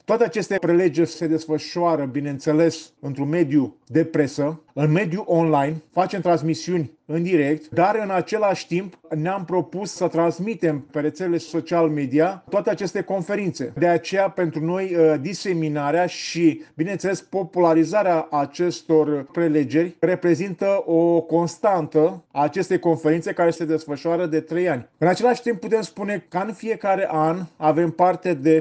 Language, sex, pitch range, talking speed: English, male, 155-175 Hz, 135 wpm